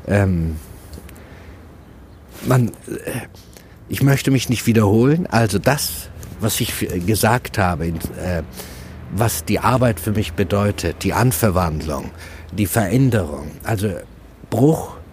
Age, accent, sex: 60-79, German, male